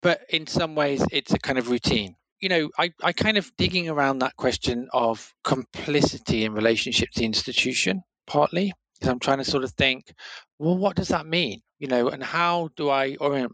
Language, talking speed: English, 205 wpm